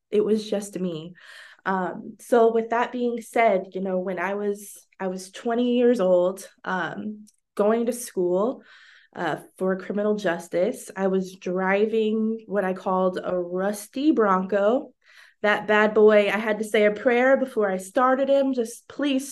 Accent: American